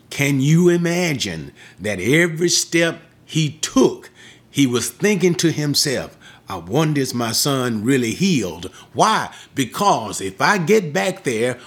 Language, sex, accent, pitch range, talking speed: English, male, American, 135-185 Hz, 140 wpm